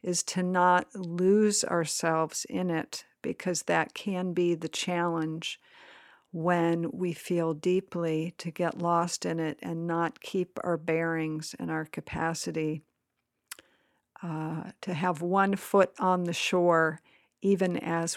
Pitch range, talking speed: 165-185 Hz, 130 wpm